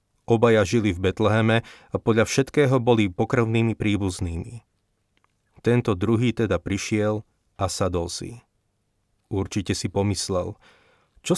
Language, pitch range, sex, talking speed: Slovak, 100-115 Hz, male, 110 wpm